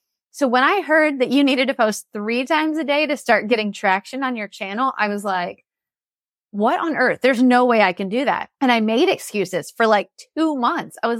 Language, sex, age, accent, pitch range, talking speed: English, female, 30-49, American, 205-275 Hz, 230 wpm